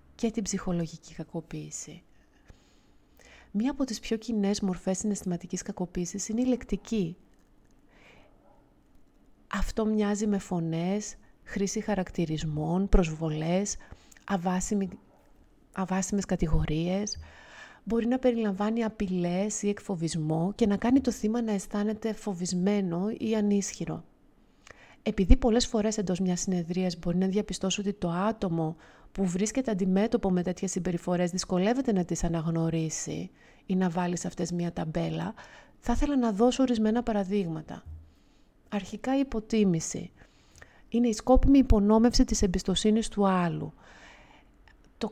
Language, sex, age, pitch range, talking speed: Greek, female, 30-49, 180-220 Hz, 115 wpm